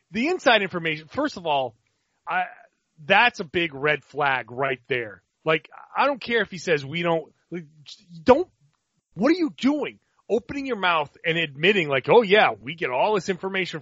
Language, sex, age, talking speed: English, male, 30-49, 180 wpm